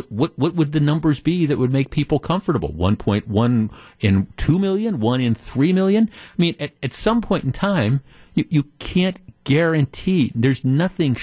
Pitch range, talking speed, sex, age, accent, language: 120-175 Hz, 185 wpm, male, 50-69, American, English